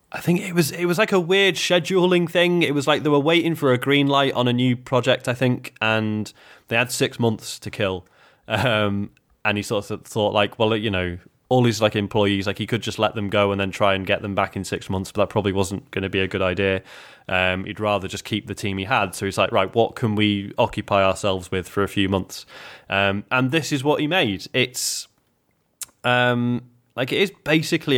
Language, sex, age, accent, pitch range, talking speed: English, male, 20-39, British, 100-125 Hz, 240 wpm